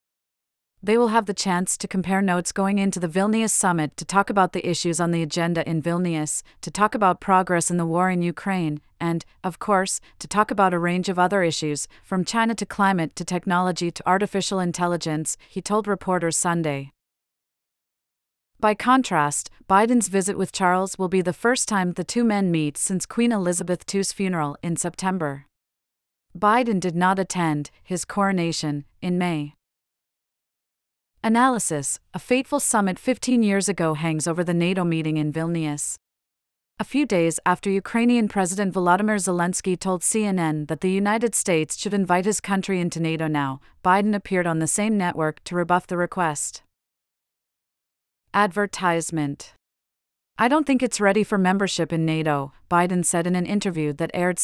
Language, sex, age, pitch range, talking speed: English, female, 30-49, 165-200 Hz, 165 wpm